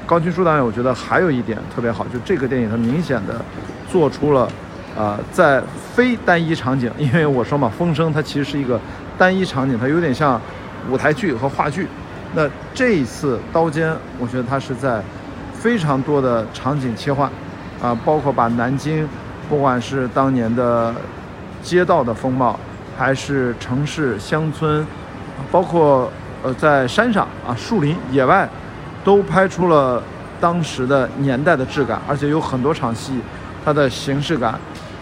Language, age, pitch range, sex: Chinese, 50-69, 120-155 Hz, male